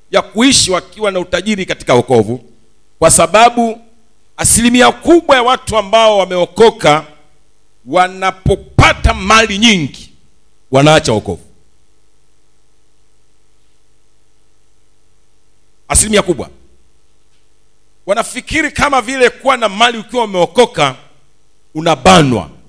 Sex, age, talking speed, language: male, 50-69, 80 wpm, Swahili